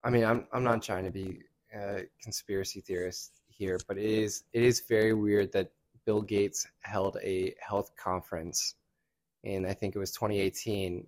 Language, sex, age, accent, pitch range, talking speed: English, male, 20-39, American, 95-115 Hz, 175 wpm